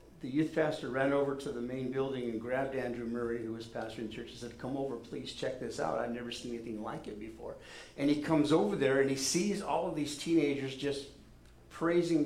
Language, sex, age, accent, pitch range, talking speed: English, male, 50-69, American, 115-140 Hz, 230 wpm